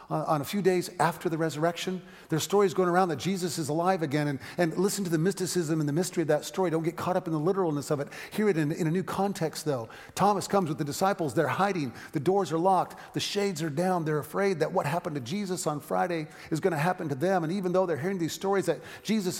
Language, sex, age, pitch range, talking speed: English, male, 40-59, 135-185 Hz, 265 wpm